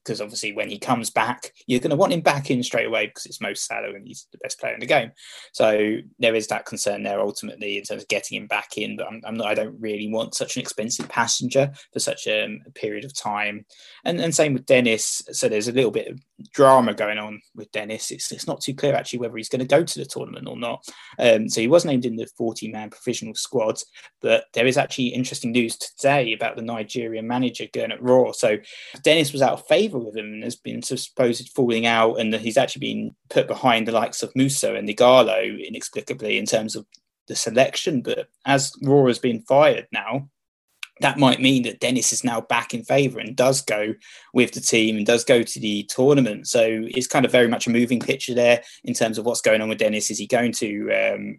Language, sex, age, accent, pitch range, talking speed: English, male, 20-39, British, 110-130 Hz, 235 wpm